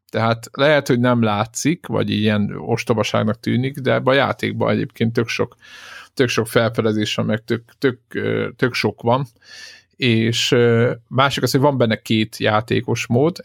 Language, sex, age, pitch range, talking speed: Hungarian, male, 50-69, 110-130 Hz, 145 wpm